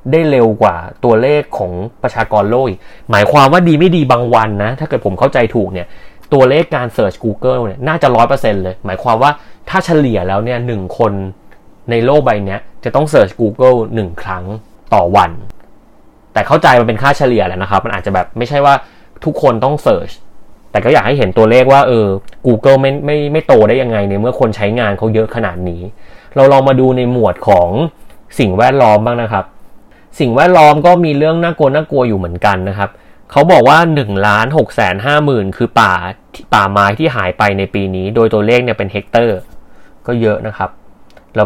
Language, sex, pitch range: Thai, male, 100-130 Hz